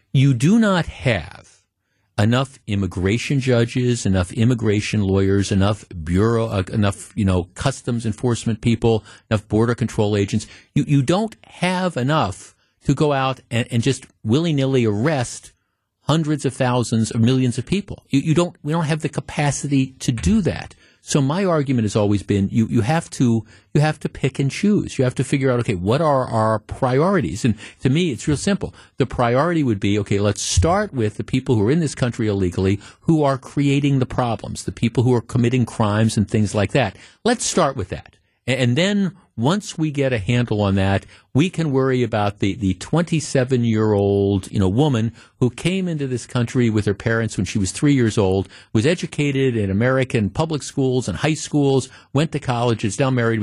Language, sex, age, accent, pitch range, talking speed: English, male, 50-69, American, 105-145 Hz, 190 wpm